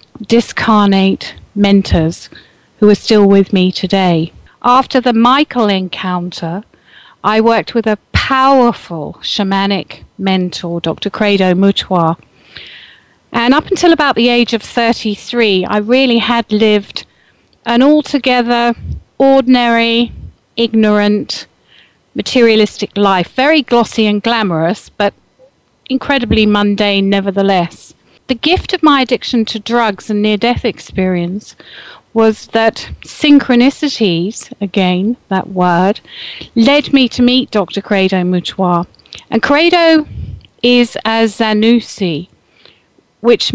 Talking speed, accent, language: 105 wpm, British, English